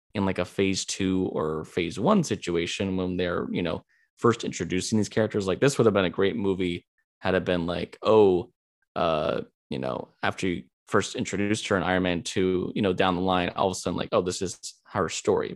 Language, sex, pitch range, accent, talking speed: English, male, 95-110 Hz, American, 220 wpm